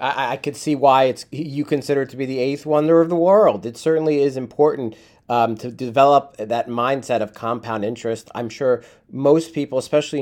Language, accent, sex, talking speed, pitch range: English, American, male, 195 wpm, 110-145 Hz